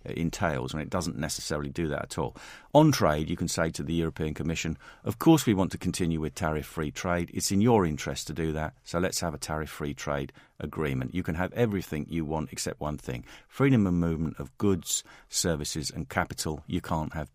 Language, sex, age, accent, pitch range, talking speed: English, male, 50-69, British, 80-100 Hz, 210 wpm